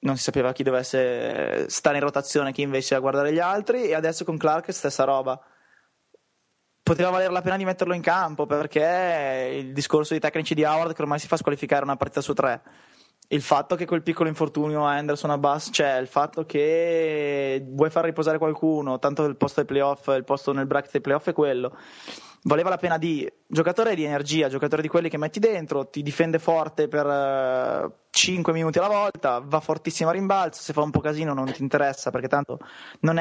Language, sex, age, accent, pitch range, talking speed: English, male, 20-39, Italian, 140-165 Hz, 200 wpm